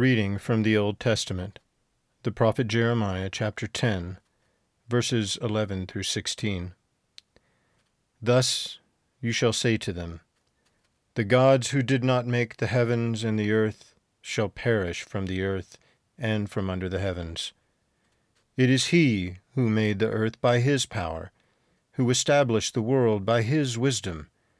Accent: American